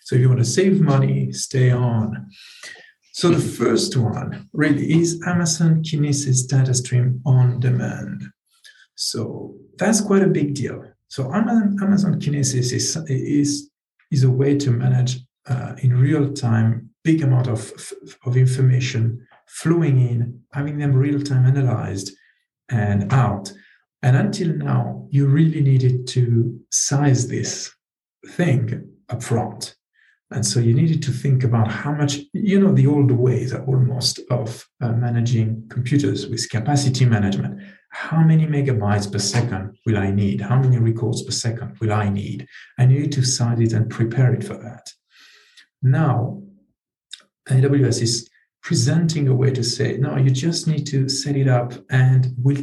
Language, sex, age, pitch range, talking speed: English, male, 50-69, 120-145 Hz, 155 wpm